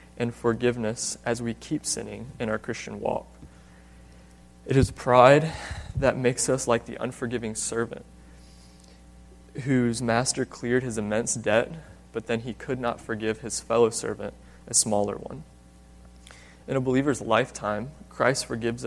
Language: English